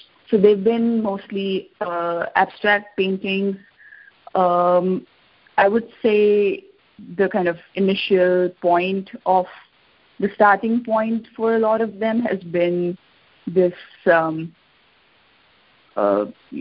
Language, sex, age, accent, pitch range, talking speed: English, female, 30-49, Indian, 175-200 Hz, 110 wpm